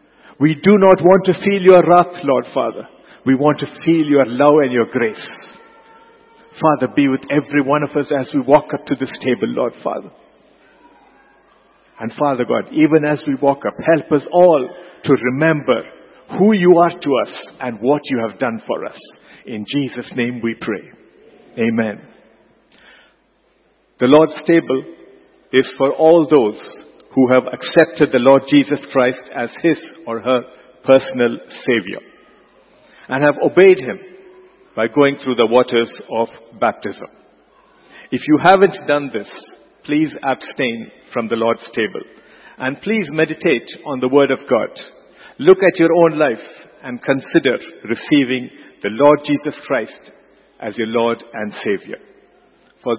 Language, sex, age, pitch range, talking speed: English, male, 50-69, 125-165 Hz, 150 wpm